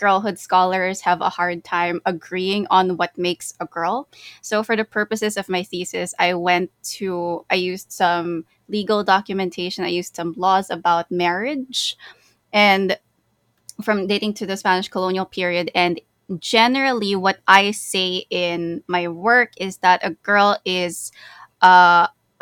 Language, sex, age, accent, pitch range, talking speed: English, female, 20-39, Filipino, 175-200 Hz, 145 wpm